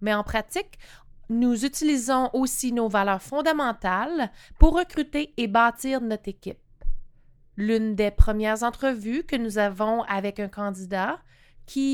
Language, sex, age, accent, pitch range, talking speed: English, female, 30-49, Canadian, 200-275 Hz, 130 wpm